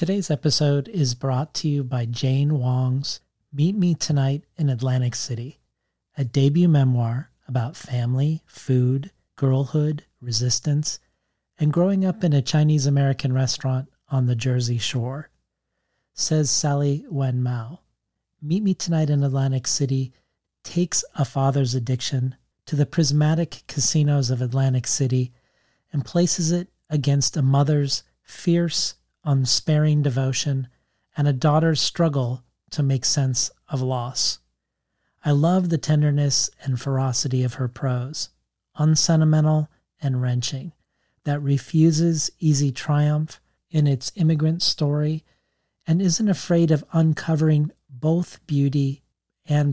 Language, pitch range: English, 130-155 Hz